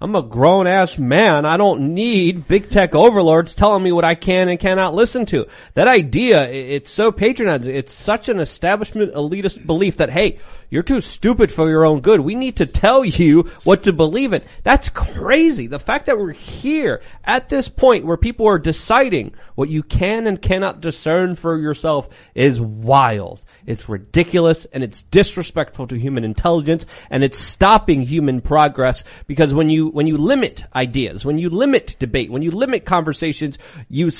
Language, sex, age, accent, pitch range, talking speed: English, male, 30-49, American, 135-190 Hz, 175 wpm